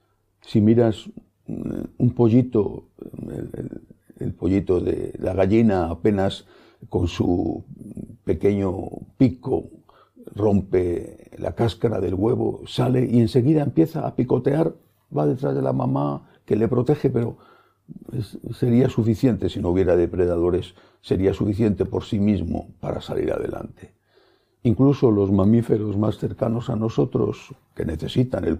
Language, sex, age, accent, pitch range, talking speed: English, male, 60-79, Spanish, 100-125 Hz, 125 wpm